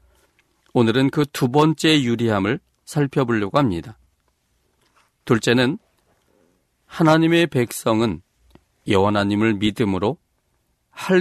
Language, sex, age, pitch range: Korean, male, 40-59, 85-135 Hz